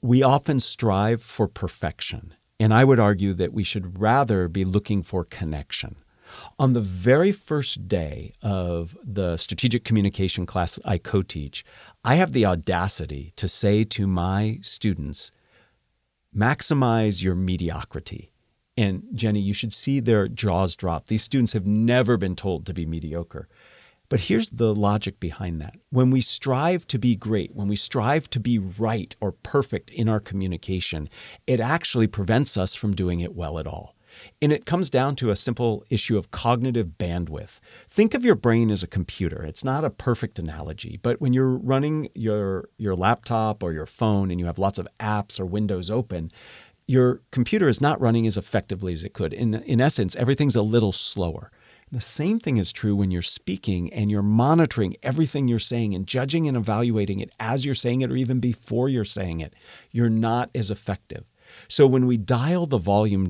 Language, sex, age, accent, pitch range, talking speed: English, male, 50-69, American, 95-125 Hz, 180 wpm